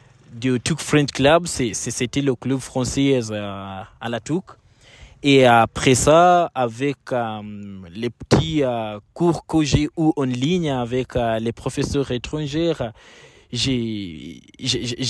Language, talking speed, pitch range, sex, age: French, 135 wpm, 120-150 Hz, male, 20-39